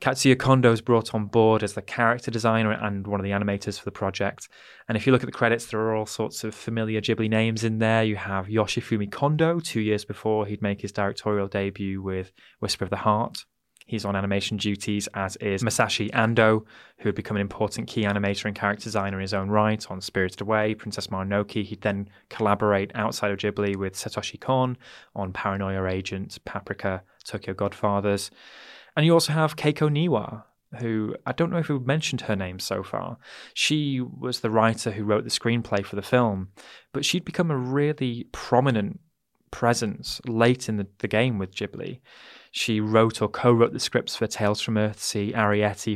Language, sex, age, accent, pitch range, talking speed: English, male, 20-39, British, 100-120 Hz, 195 wpm